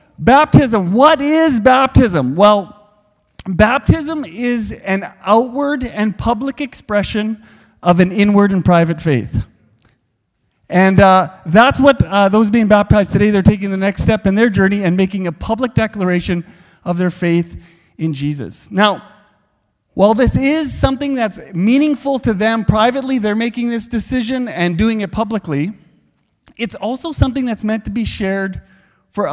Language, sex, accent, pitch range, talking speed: English, male, American, 185-255 Hz, 145 wpm